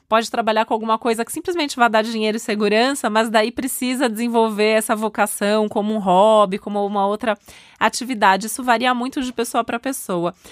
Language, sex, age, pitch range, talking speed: Portuguese, female, 20-39, 200-230 Hz, 185 wpm